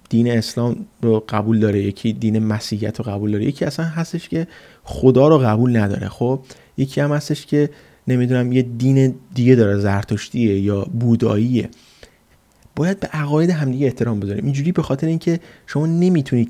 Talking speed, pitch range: 160 wpm, 110-135 Hz